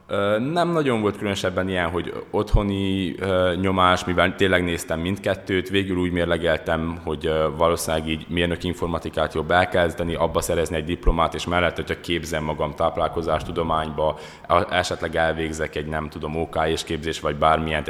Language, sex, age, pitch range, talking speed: Hungarian, male, 20-39, 80-90 Hz, 135 wpm